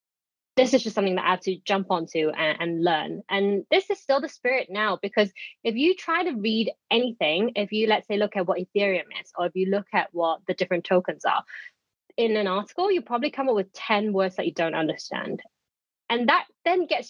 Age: 20-39